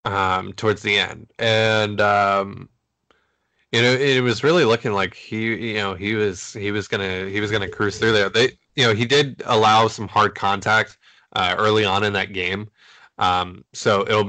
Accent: American